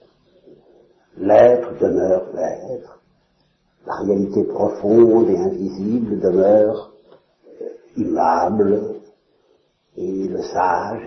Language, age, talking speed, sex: French, 60-79, 70 wpm, male